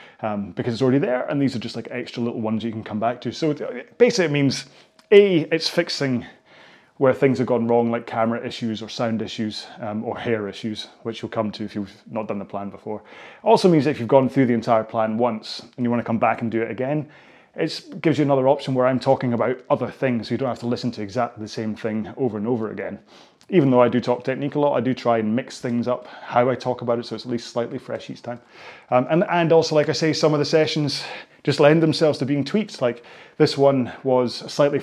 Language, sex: English, male